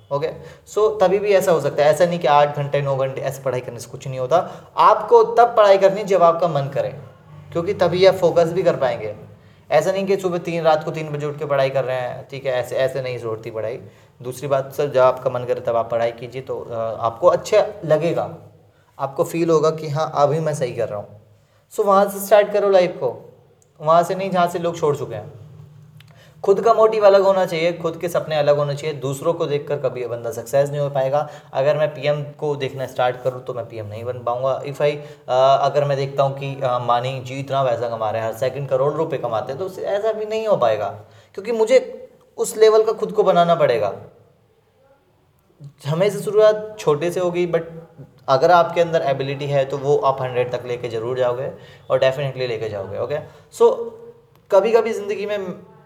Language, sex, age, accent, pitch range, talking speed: Hindi, male, 20-39, native, 130-185 Hz, 220 wpm